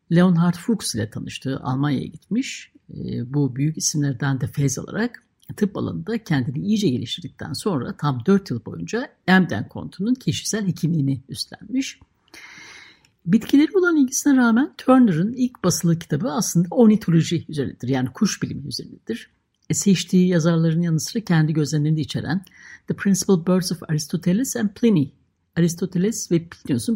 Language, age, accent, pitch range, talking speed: Turkish, 60-79, native, 145-210 Hz, 130 wpm